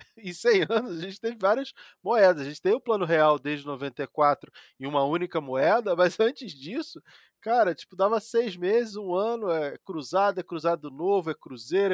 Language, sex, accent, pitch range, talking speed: Portuguese, male, Brazilian, 155-200 Hz, 185 wpm